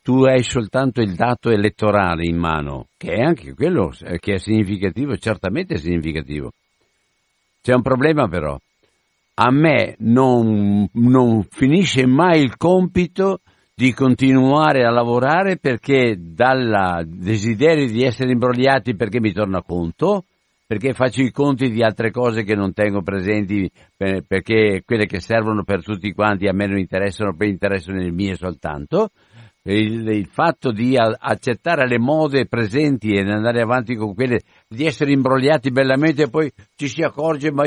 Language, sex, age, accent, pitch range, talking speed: Italian, male, 60-79, native, 105-135 Hz, 150 wpm